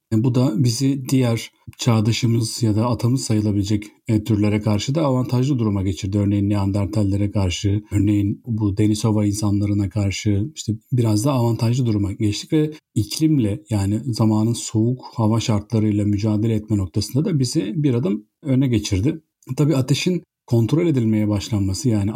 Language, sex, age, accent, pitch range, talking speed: Turkish, male, 40-59, native, 105-130 Hz, 140 wpm